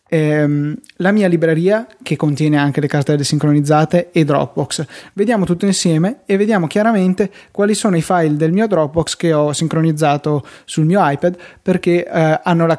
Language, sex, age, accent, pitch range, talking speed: Italian, male, 20-39, native, 150-175 Hz, 160 wpm